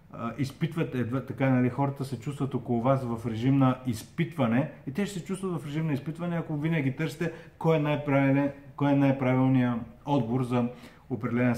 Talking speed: 170 wpm